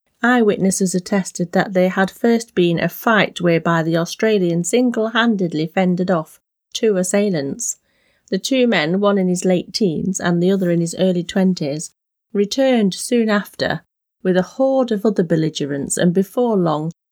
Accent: British